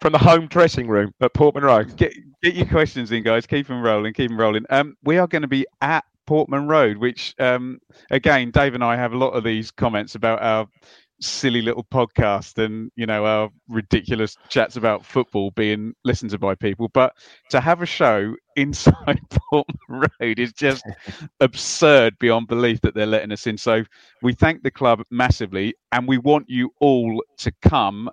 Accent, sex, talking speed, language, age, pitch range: British, male, 190 wpm, English, 30-49, 110-135 Hz